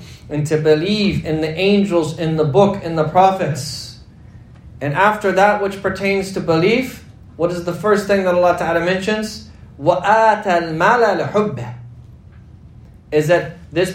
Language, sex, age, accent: English, male, 30-49, American